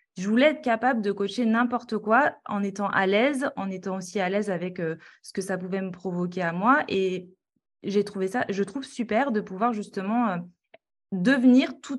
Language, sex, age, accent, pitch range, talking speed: French, female, 20-39, French, 200-255 Hz, 200 wpm